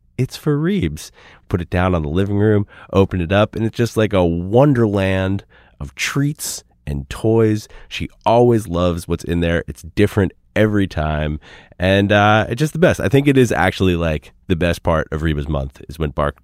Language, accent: English, American